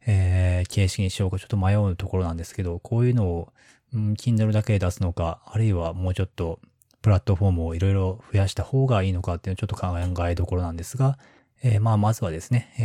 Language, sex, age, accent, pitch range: Japanese, male, 20-39, native, 90-115 Hz